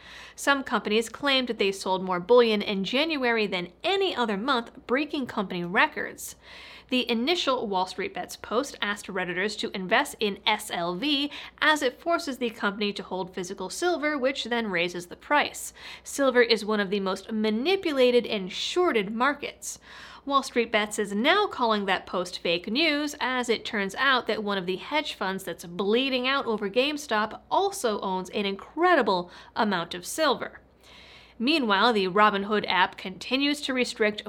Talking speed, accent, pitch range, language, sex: 160 wpm, American, 200-275 Hz, English, female